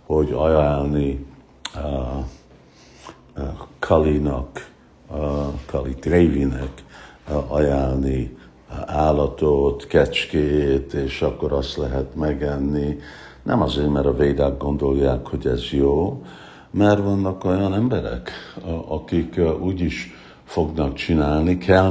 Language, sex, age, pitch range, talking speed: Hungarian, male, 60-79, 70-85 Hz, 105 wpm